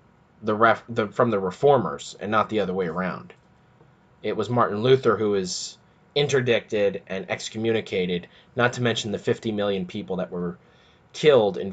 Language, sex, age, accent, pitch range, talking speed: English, male, 20-39, American, 105-135 Hz, 165 wpm